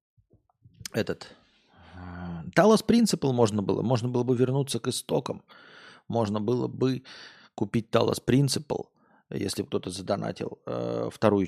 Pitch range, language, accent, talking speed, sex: 100-145 Hz, Russian, native, 110 wpm, male